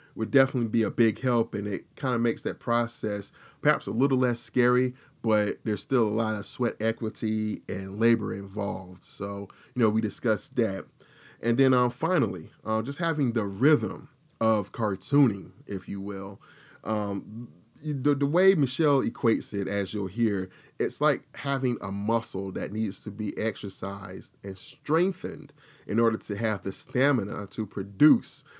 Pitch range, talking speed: 105-135 Hz, 165 wpm